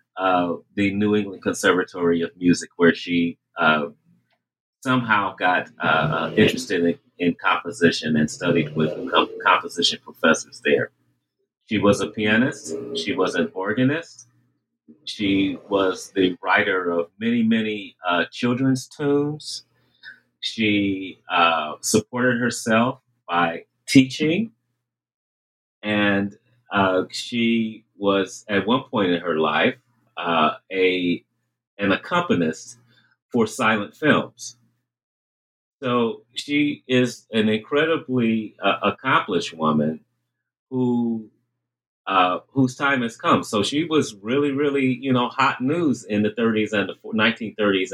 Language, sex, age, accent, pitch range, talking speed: English, male, 30-49, American, 90-125 Hz, 120 wpm